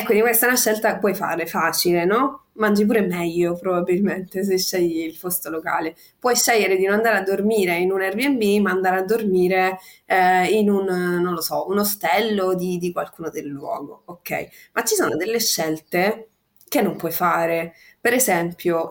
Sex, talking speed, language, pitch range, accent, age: female, 185 wpm, Italian, 175-220 Hz, native, 20-39